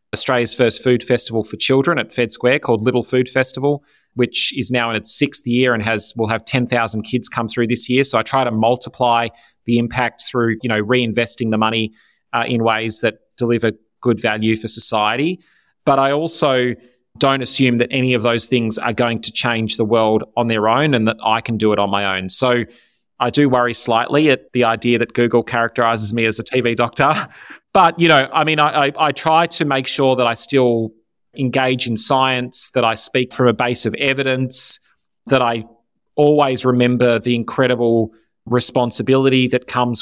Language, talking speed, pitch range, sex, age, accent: English, 195 wpm, 115-130 Hz, male, 30-49, Australian